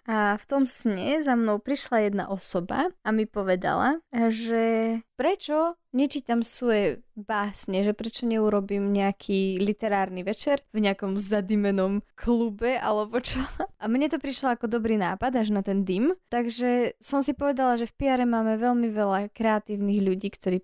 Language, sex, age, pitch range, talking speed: Slovak, female, 20-39, 205-235 Hz, 155 wpm